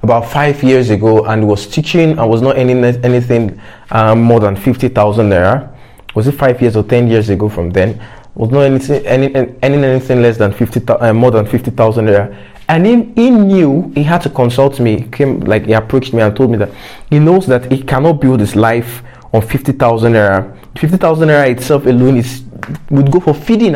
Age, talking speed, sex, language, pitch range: 20-39, 210 wpm, male, English, 115-140 Hz